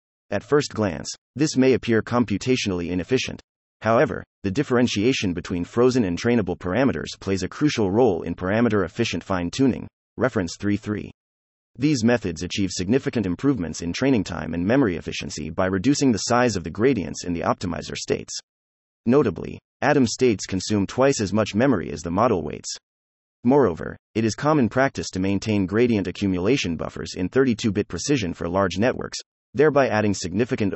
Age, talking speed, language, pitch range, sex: 30-49, 150 wpm, English, 90-120 Hz, male